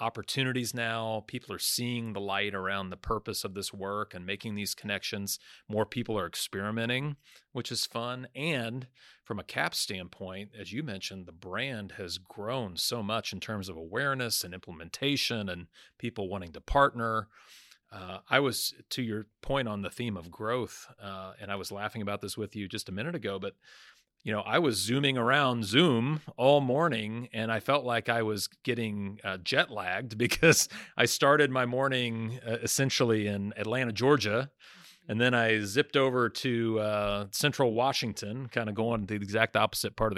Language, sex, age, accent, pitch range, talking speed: English, male, 40-59, American, 100-125 Hz, 180 wpm